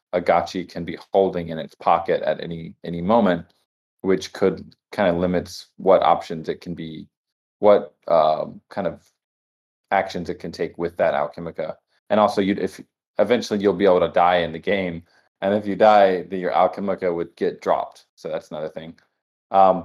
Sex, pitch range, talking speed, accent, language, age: male, 85-100 Hz, 185 wpm, American, English, 20-39